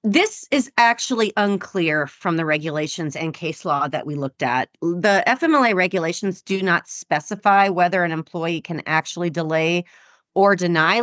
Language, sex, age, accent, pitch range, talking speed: English, female, 30-49, American, 160-200 Hz, 150 wpm